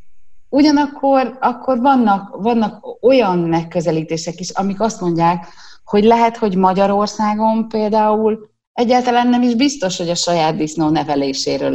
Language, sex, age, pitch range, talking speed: Hungarian, female, 30-49, 160-220 Hz, 125 wpm